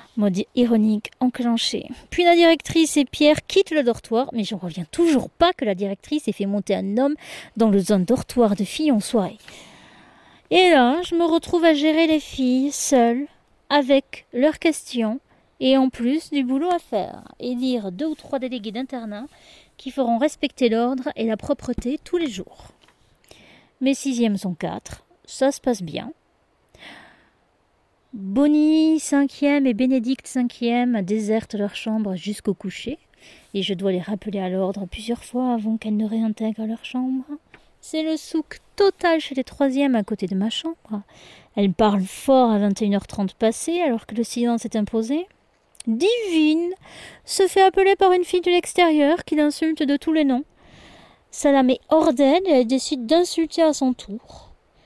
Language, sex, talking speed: French, female, 170 wpm